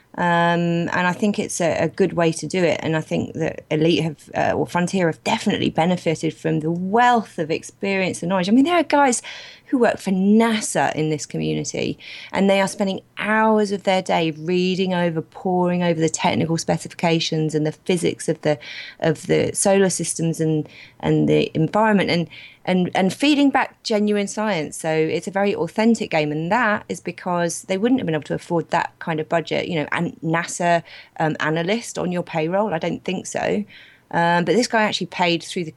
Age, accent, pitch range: 30-49, British, 155-195 Hz